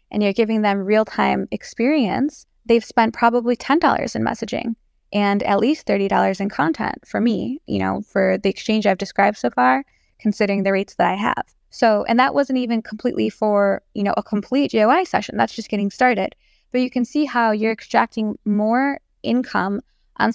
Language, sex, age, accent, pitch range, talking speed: English, female, 20-39, American, 200-245 Hz, 185 wpm